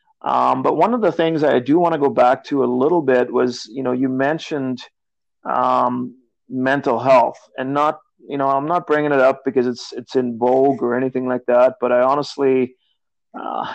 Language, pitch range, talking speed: English, 120-145 Hz, 205 wpm